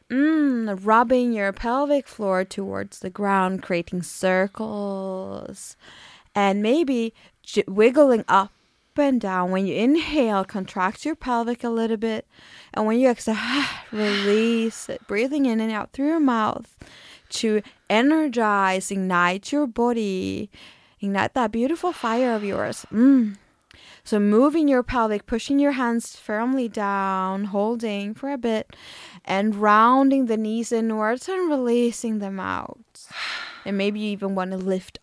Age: 20-39